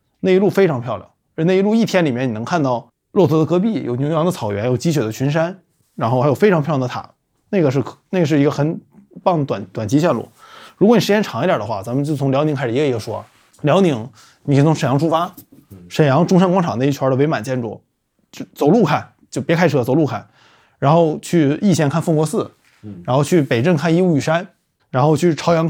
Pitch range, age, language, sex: 130-170 Hz, 20-39, Chinese, male